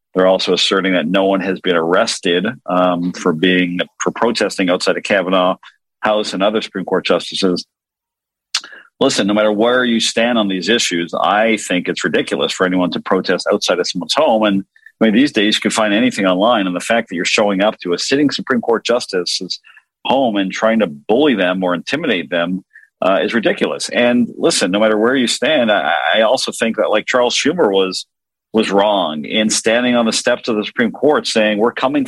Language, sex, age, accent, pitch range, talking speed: English, male, 50-69, American, 95-145 Hz, 205 wpm